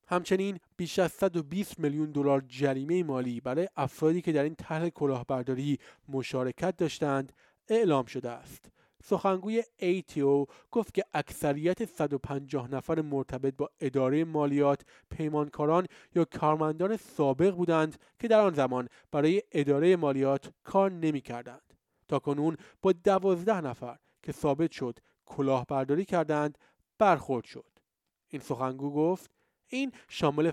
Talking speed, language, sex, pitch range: 120 wpm, Persian, male, 140-175 Hz